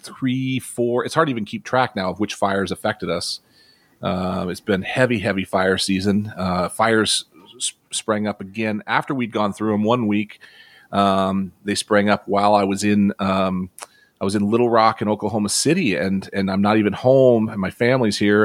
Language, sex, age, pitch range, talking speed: English, male, 40-59, 95-120 Hz, 200 wpm